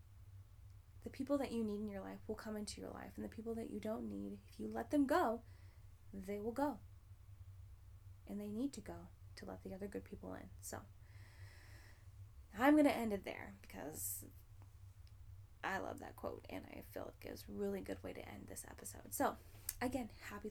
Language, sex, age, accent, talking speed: English, female, 10-29, American, 200 wpm